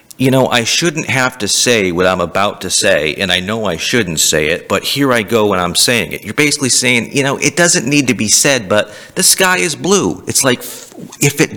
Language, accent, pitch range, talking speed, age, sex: English, American, 95-135 Hz, 245 wpm, 40-59, male